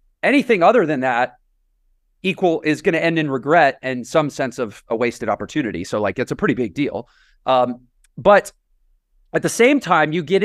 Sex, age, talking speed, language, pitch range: male, 30-49, 190 wpm, English, 130-180 Hz